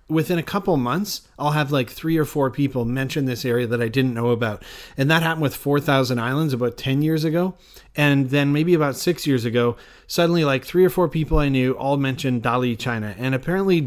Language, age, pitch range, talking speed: English, 30-49, 130-150 Hz, 215 wpm